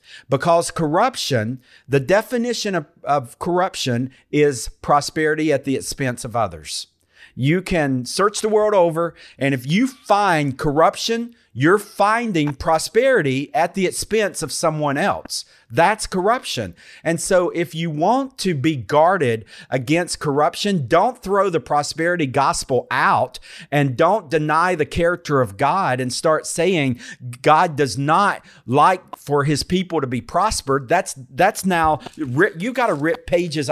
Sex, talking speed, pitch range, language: male, 140 wpm, 140-185 Hz, English